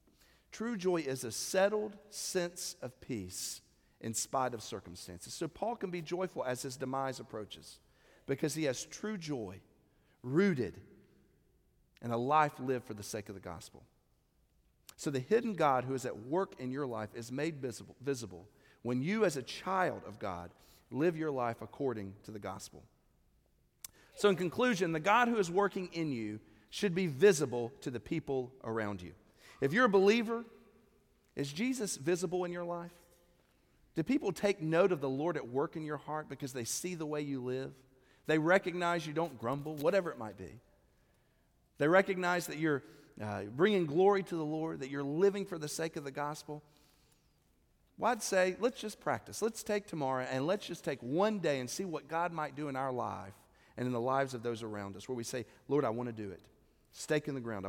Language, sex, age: English, male, 40-59